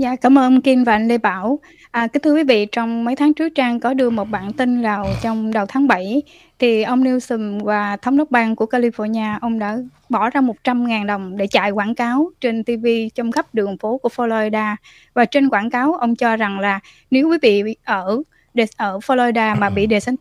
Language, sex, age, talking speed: Vietnamese, female, 10-29, 215 wpm